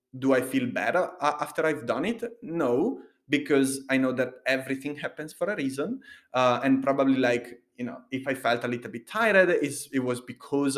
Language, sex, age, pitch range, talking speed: English, male, 30-49, 130-175 Hz, 190 wpm